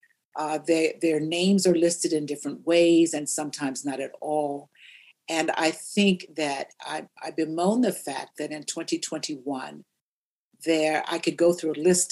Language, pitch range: English, 150-175 Hz